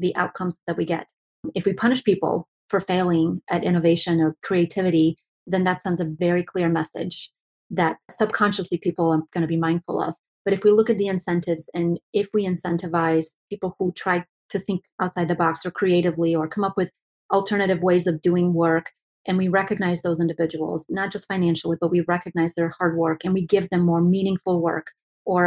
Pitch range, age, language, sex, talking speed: 170-195 Hz, 30-49, English, female, 195 wpm